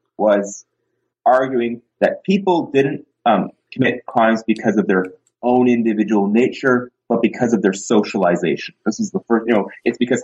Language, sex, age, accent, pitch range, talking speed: English, male, 30-49, American, 110-155 Hz, 160 wpm